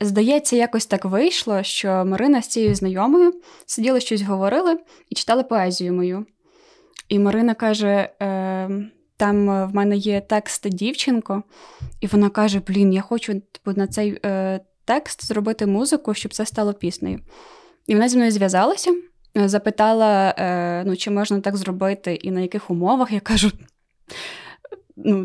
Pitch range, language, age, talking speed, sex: 200-240 Hz, Ukrainian, 20-39, 140 wpm, female